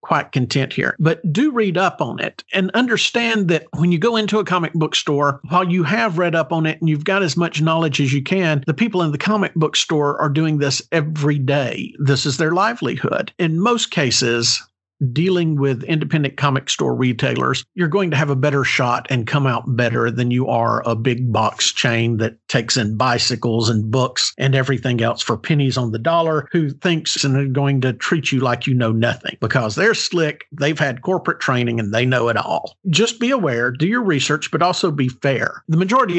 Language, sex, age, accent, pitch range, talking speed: English, male, 50-69, American, 130-175 Hz, 215 wpm